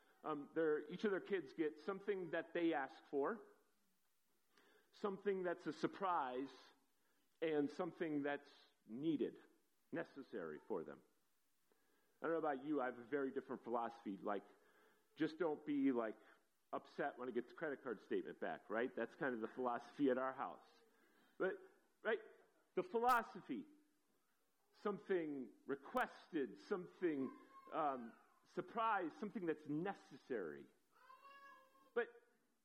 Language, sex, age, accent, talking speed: English, male, 40-59, American, 125 wpm